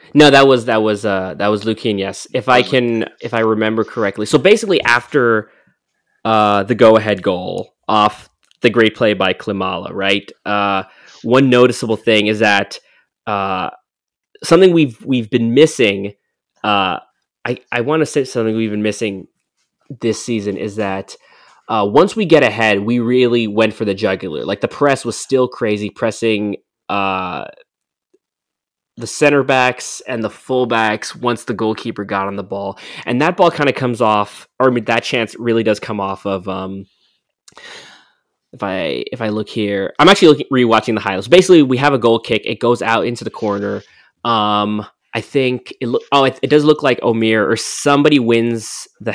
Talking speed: 180 wpm